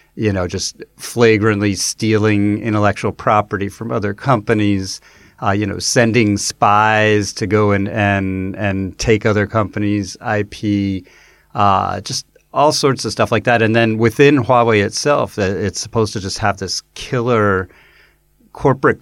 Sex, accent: male, American